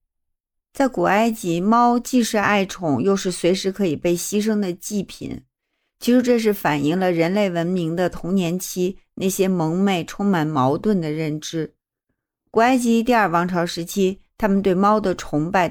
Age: 50-69